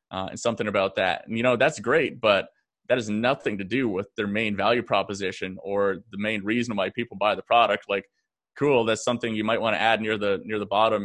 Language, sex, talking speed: English, male, 240 wpm